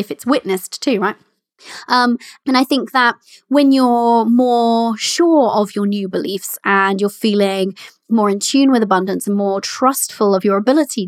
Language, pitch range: English, 215-270 Hz